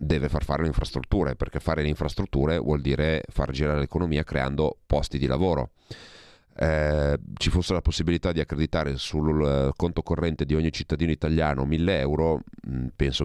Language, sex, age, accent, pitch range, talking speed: Italian, male, 30-49, native, 70-85 Hz, 160 wpm